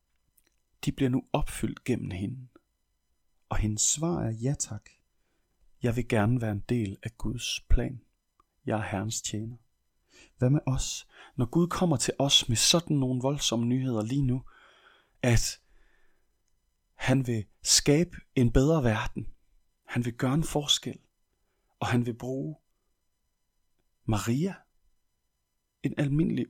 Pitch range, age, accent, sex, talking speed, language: 100-135 Hz, 30-49, native, male, 135 wpm, Danish